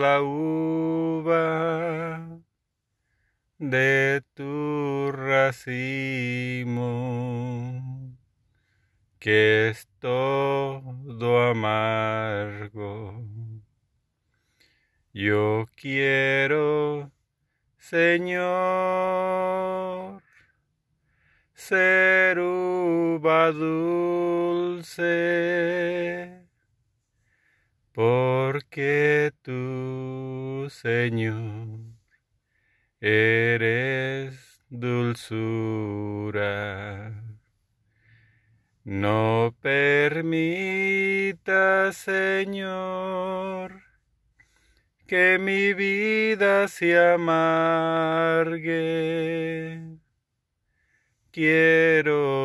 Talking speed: 35 wpm